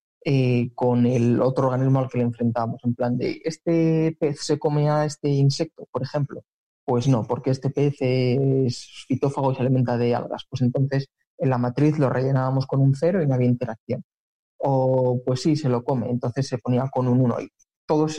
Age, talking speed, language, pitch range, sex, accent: 20-39, 200 wpm, Spanish, 125-150 Hz, male, Spanish